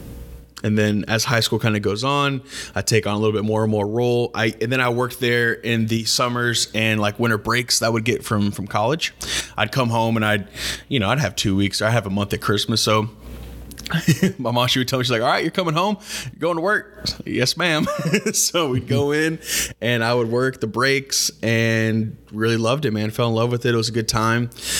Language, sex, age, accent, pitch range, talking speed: English, male, 20-39, American, 105-120 Hz, 250 wpm